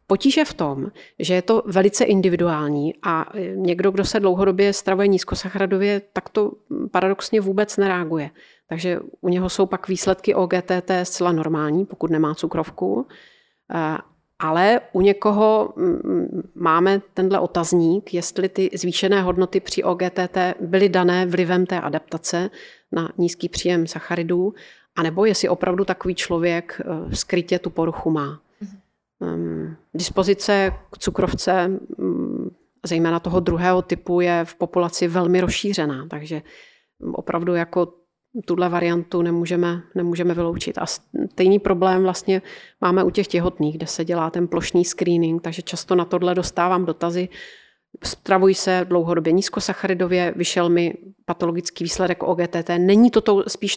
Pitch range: 175-195 Hz